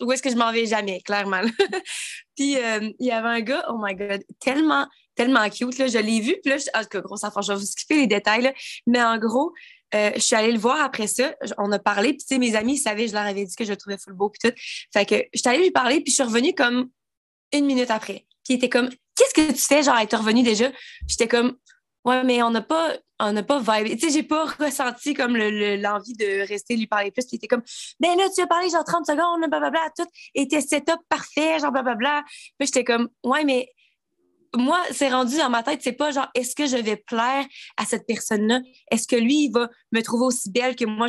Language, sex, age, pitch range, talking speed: French, female, 20-39, 225-280 Hz, 260 wpm